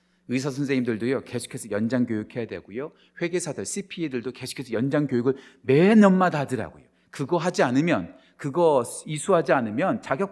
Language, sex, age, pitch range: Korean, male, 40-59, 130-185 Hz